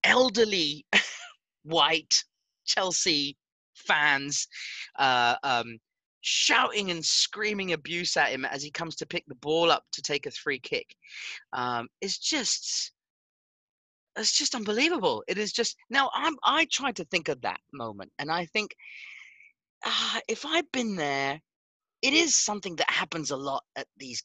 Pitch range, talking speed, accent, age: 130-210 Hz, 150 wpm, British, 30-49